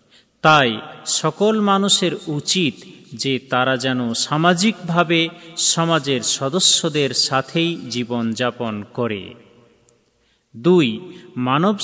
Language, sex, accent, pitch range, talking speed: Bengali, male, native, 130-185 Hz, 75 wpm